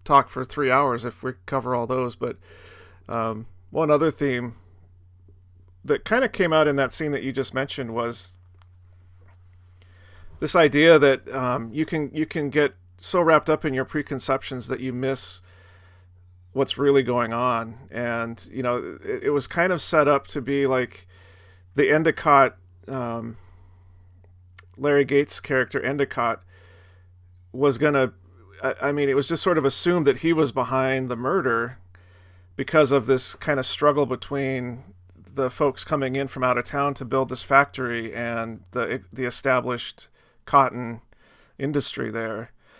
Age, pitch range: 40-59, 95-140 Hz